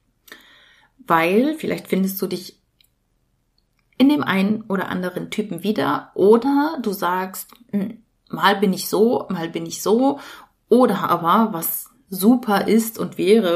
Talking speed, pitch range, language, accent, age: 135 wpm, 180-220 Hz, German, German, 30-49